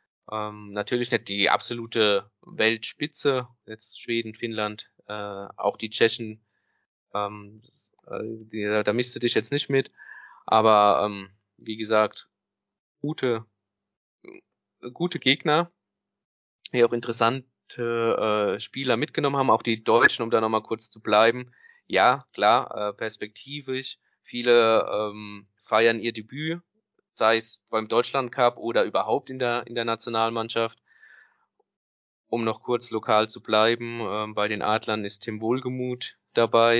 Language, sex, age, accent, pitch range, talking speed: German, male, 20-39, German, 105-120 Hz, 135 wpm